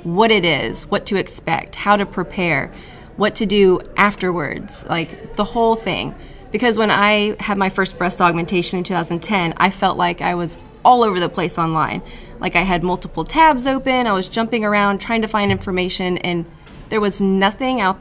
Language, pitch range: English, 170-205 Hz